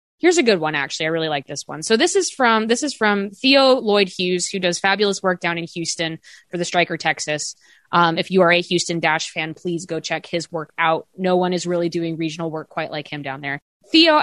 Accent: American